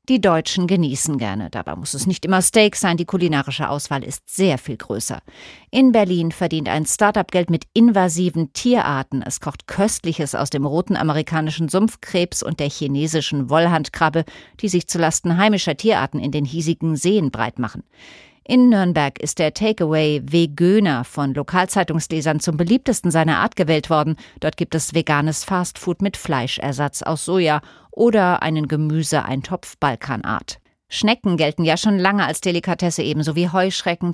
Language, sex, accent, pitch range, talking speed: German, female, German, 150-185 Hz, 155 wpm